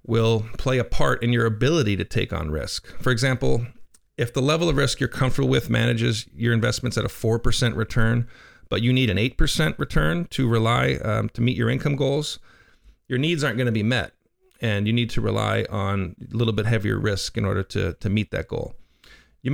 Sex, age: male, 40-59